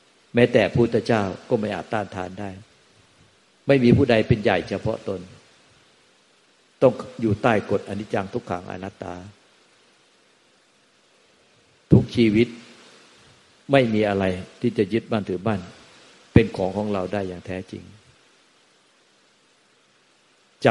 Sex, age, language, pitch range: male, 60-79, Thai, 95-115 Hz